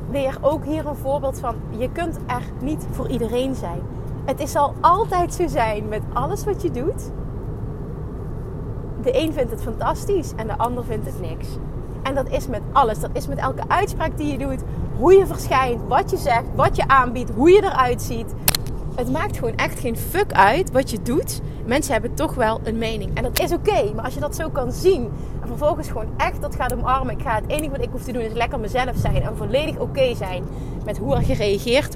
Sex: female